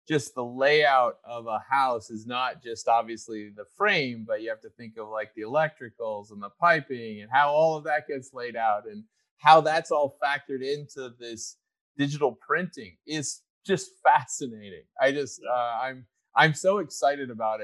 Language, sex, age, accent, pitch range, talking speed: English, male, 30-49, American, 120-155 Hz, 175 wpm